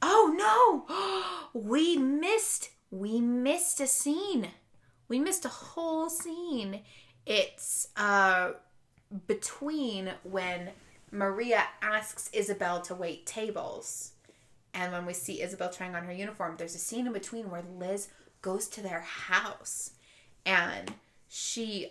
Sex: female